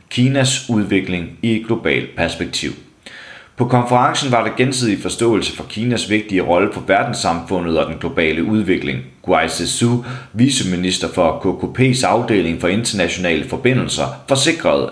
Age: 30-49